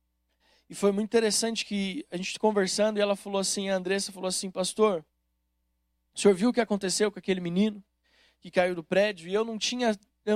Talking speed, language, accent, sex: 205 wpm, Portuguese, Brazilian, male